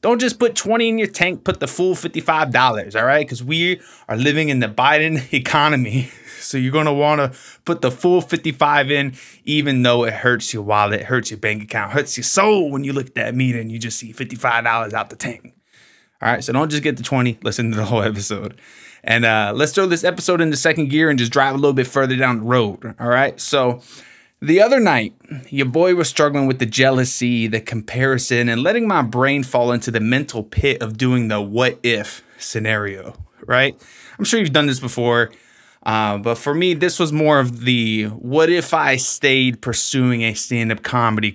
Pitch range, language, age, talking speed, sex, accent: 115-150 Hz, English, 20-39, 200 wpm, male, American